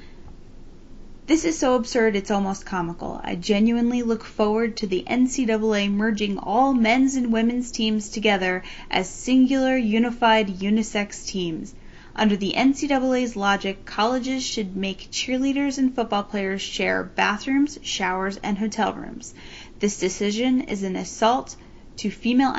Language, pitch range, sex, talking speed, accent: English, 195-245 Hz, female, 135 wpm, American